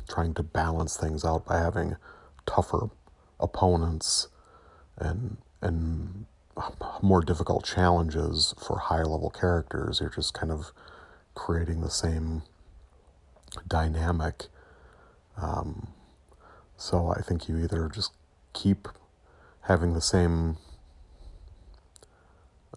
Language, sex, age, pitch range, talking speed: English, male, 30-49, 80-95 Hz, 100 wpm